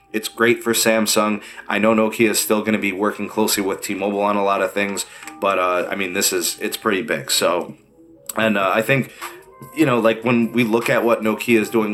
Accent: American